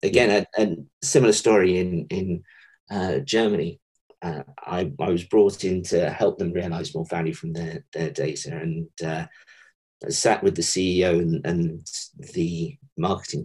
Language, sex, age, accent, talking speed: English, male, 40-59, British, 160 wpm